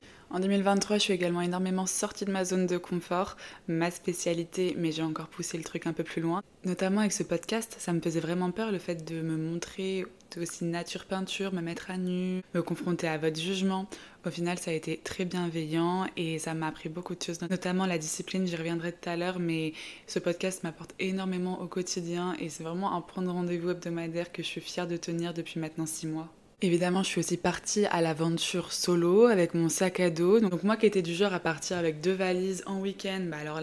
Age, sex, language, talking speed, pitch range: 20-39, female, French, 225 wpm, 165-190 Hz